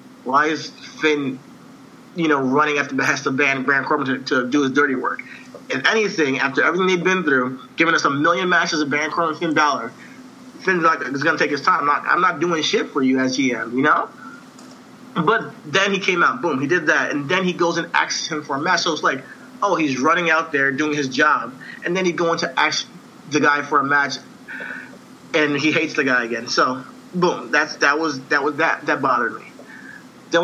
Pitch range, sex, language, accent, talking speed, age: 145-200 Hz, male, English, American, 230 wpm, 30-49